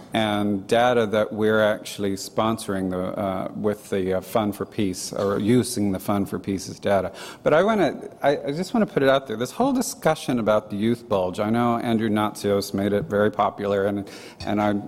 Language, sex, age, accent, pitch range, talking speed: English, male, 40-59, American, 105-130 Hz, 200 wpm